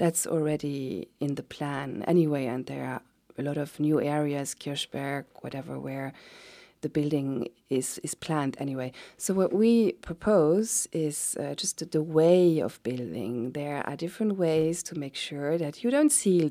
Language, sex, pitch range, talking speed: English, female, 145-180 Hz, 165 wpm